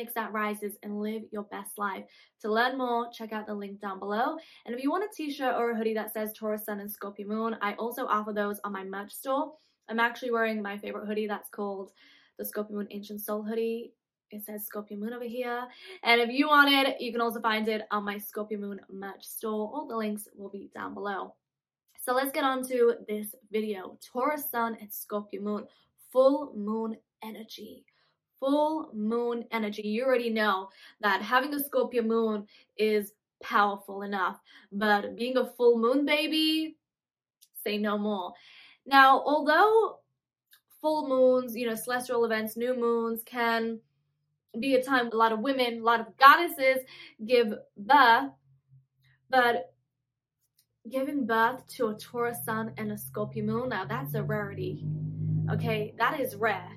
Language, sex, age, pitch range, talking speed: English, female, 10-29, 210-250 Hz, 175 wpm